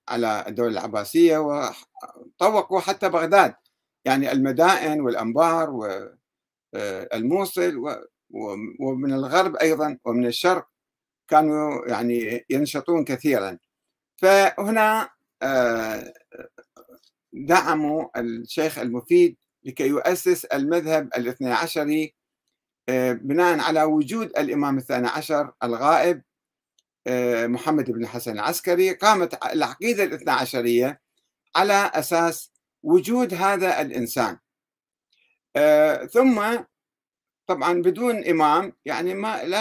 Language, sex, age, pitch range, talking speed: Arabic, male, 60-79, 130-185 Hz, 85 wpm